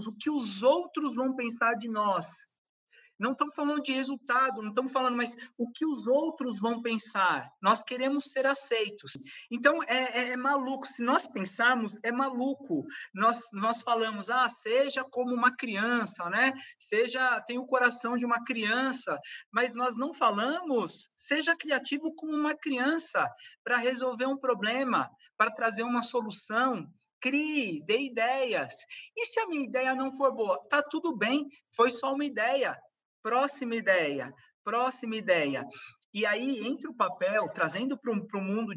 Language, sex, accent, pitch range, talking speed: Portuguese, male, Brazilian, 215-275 Hz, 155 wpm